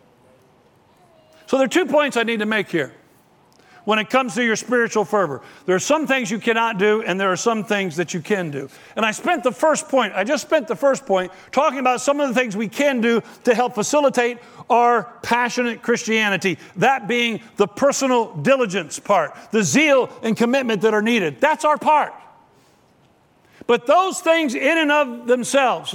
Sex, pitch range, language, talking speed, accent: male, 220-290 Hz, English, 190 wpm, American